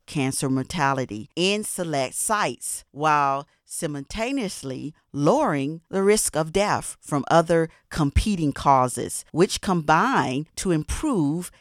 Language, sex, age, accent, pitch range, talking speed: English, female, 50-69, American, 140-205 Hz, 105 wpm